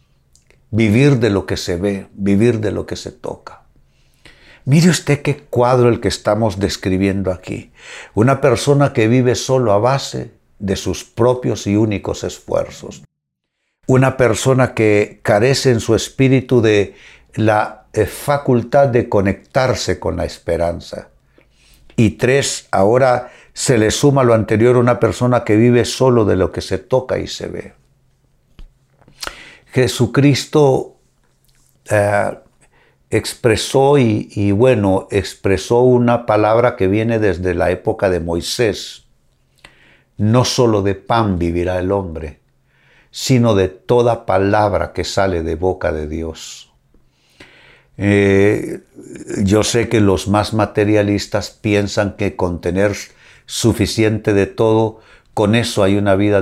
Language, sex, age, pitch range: Spanish, male, 60-79, 100-125 Hz